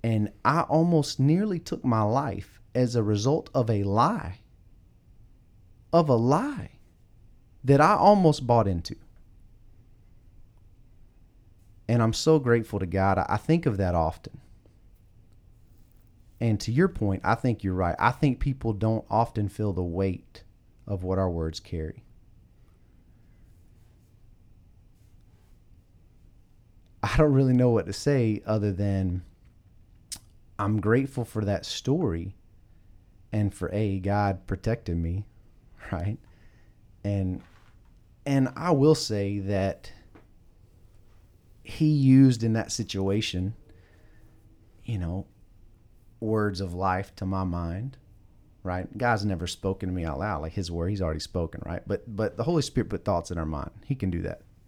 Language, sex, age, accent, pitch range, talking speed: English, male, 30-49, American, 95-115 Hz, 135 wpm